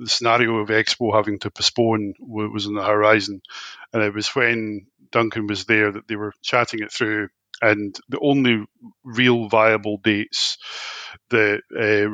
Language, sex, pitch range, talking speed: English, male, 105-115 Hz, 160 wpm